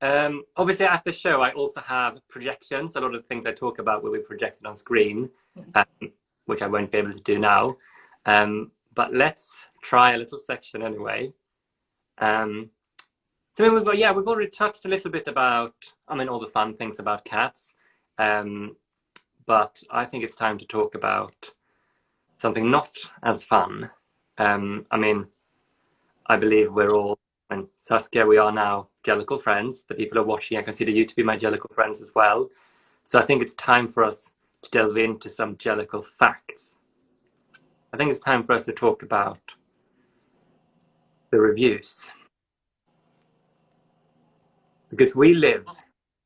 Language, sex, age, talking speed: English, male, 20-39, 160 wpm